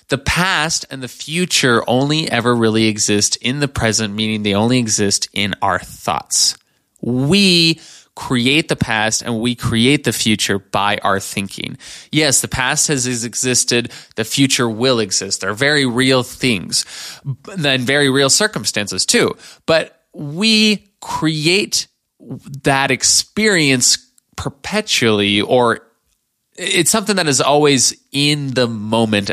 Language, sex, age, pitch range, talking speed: English, male, 20-39, 110-145 Hz, 130 wpm